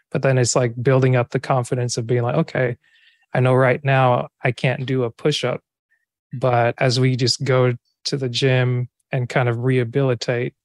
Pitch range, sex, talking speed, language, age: 125-135 Hz, male, 185 wpm, English, 20-39